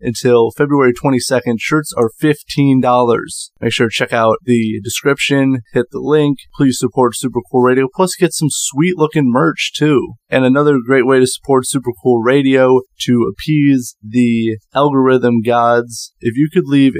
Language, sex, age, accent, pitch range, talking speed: English, male, 20-39, American, 115-135 Hz, 160 wpm